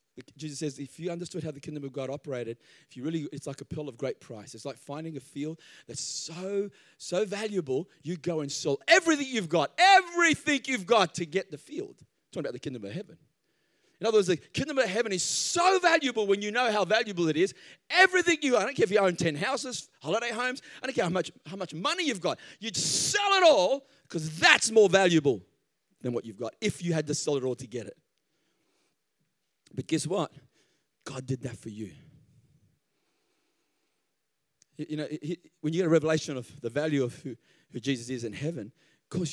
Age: 30-49